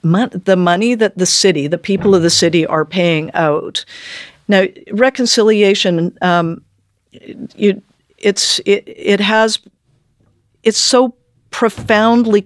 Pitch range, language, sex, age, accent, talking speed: 155-190 Hz, English, female, 50-69, American, 120 wpm